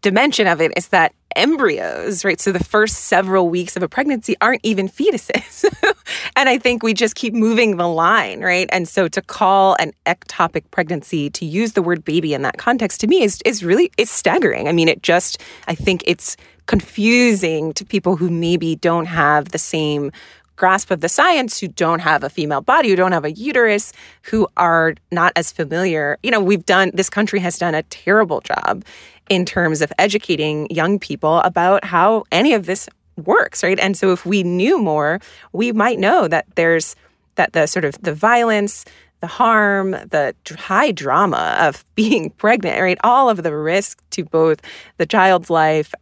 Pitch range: 165-210 Hz